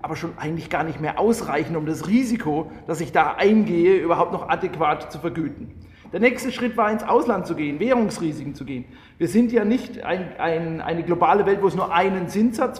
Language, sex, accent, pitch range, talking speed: German, male, German, 170-225 Hz, 205 wpm